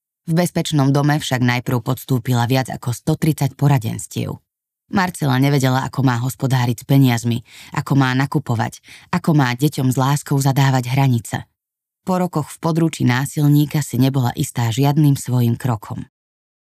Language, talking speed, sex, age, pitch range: Slovak, 135 wpm, female, 20-39, 130-160 Hz